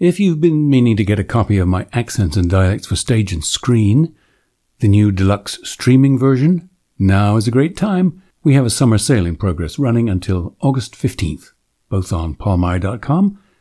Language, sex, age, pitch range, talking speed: English, male, 60-79, 100-145 Hz, 180 wpm